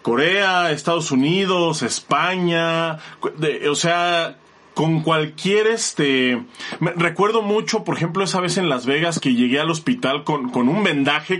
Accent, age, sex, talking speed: Mexican, 30-49, male, 135 wpm